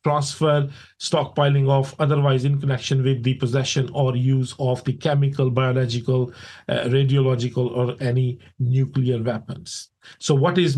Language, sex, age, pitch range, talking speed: English, male, 50-69, 125-145 Hz, 135 wpm